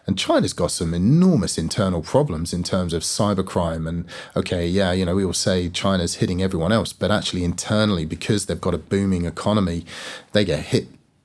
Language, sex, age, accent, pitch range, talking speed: English, male, 30-49, British, 95-115 Hz, 185 wpm